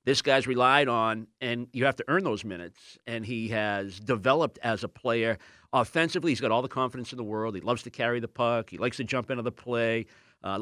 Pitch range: 115-145 Hz